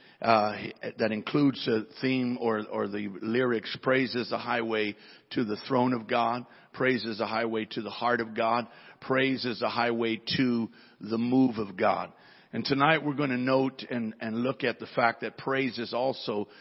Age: 50-69